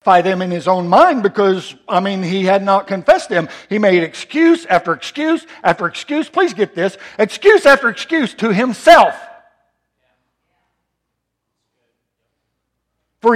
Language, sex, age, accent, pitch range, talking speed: English, male, 60-79, American, 160-265 Hz, 130 wpm